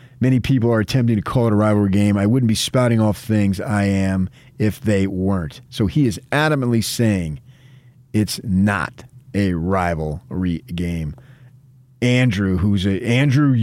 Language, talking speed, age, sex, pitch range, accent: English, 155 wpm, 40-59, male, 100-130 Hz, American